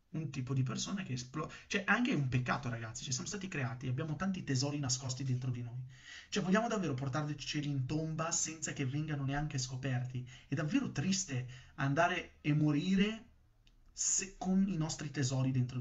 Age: 30-49